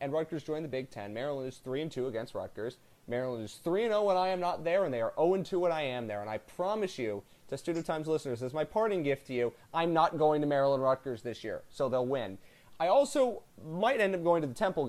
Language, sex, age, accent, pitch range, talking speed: English, male, 30-49, American, 125-170 Hz, 250 wpm